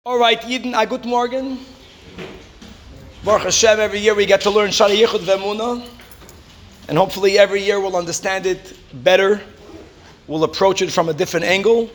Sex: male